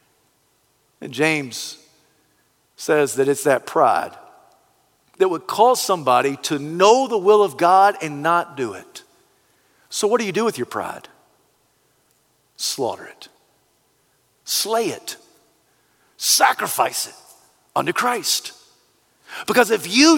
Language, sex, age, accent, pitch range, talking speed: English, male, 50-69, American, 210-320 Hz, 120 wpm